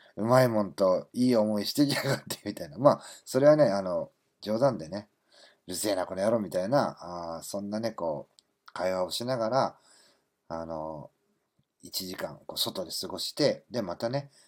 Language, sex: Japanese, male